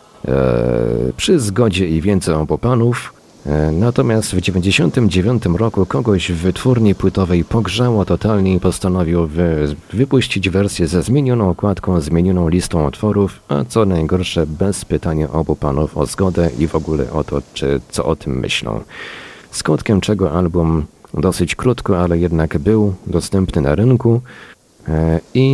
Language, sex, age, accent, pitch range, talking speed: Polish, male, 40-59, native, 80-100 Hz, 130 wpm